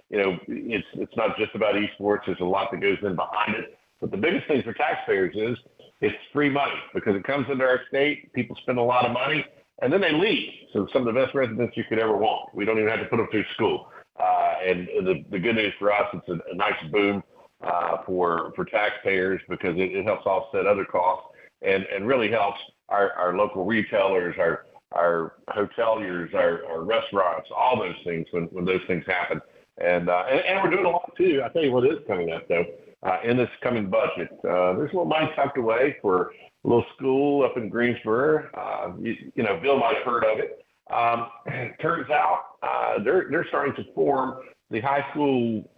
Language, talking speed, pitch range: English, 220 wpm, 100-135 Hz